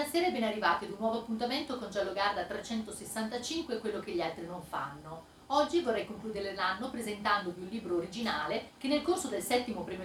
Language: Italian